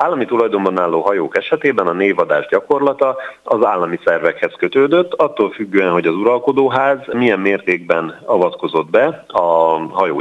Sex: male